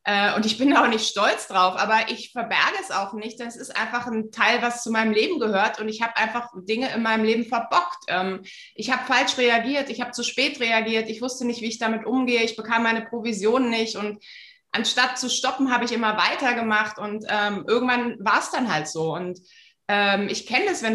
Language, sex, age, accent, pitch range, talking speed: German, female, 20-39, German, 210-245 Hz, 210 wpm